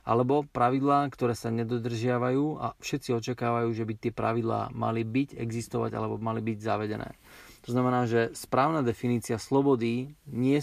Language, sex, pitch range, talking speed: Slovak, male, 115-125 Hz, 145 wpm